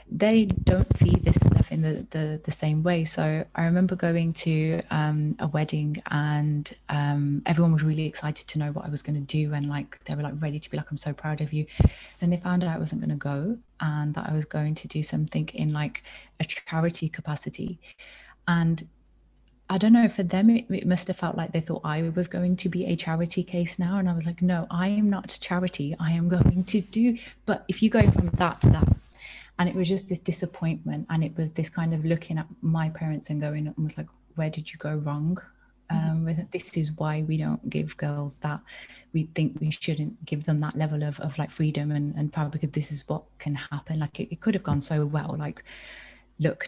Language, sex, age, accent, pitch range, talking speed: English, female, 30-49, British, 150-175 Hz, 230 wpm